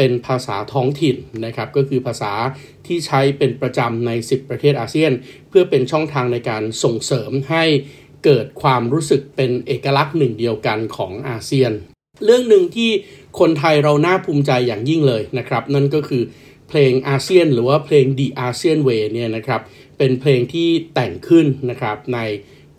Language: Thai